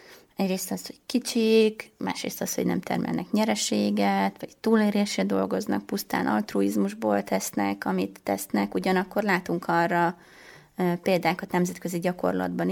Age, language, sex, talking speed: 20-39, Hungarian, female, 115 wpm